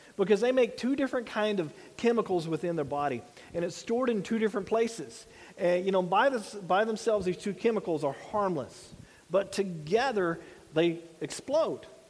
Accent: American